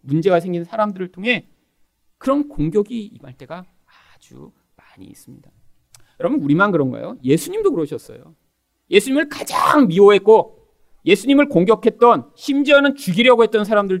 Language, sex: Korean, male